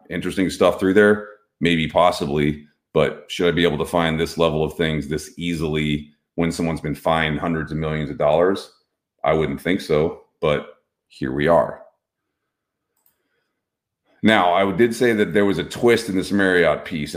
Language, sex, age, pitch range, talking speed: English, male, 40-59, 80-95 Hz, 170 wpm